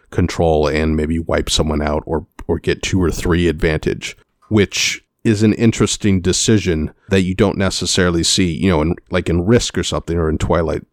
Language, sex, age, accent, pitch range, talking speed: English, male, 30-49, American, 85-100 Hz, 185 wpm